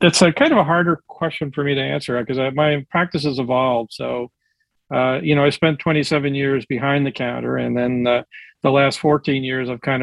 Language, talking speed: English, 220 wpm